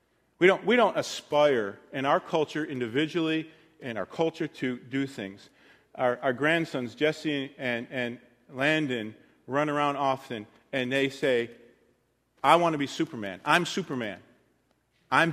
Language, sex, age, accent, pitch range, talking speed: English, male, 40-59, American, 125-170 Hz, 140 wpm